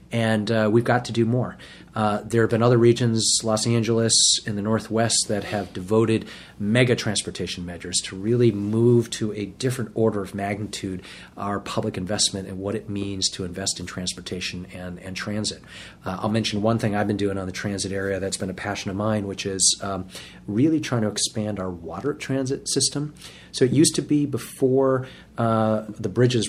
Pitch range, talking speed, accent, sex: 95-115 Hz, 195 wpm, American, male